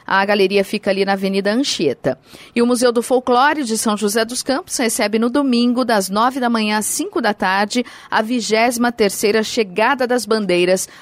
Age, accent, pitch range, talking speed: 40-59, Brazilian, 205-255 Hz, 185 wpm